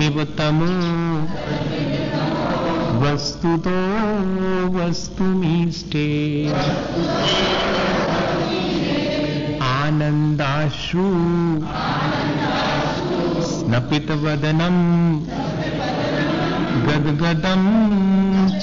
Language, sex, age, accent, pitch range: Hindi, male, 50-69, native, 150-185 Hz